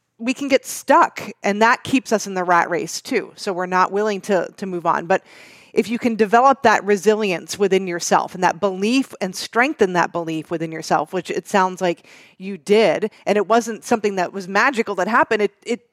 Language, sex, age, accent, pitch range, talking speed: English, female, 30-49, American, 190-230 Hz, 210 wpm